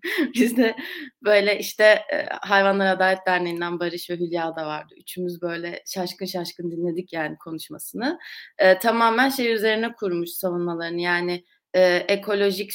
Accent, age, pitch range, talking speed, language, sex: native, 30-49, 180-235 Hz, 130 wpm, Turkish, female